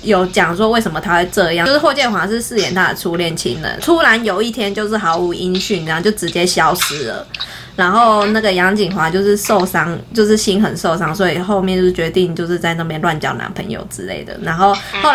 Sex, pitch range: female, 180-220 Hz